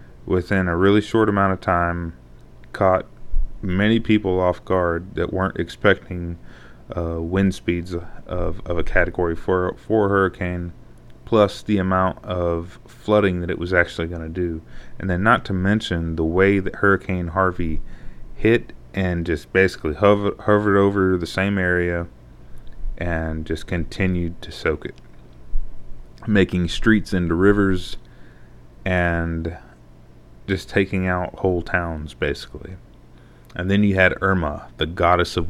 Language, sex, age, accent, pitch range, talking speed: English, male, 30-49, American, 80-95 Hz, 135 wpm